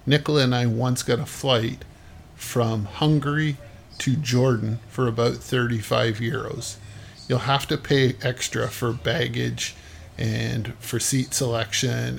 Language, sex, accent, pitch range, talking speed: English, male, American, 95-125 Hz, 130 wpm